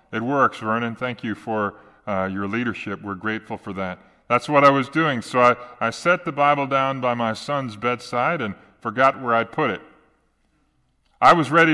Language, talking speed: English, 195 wpm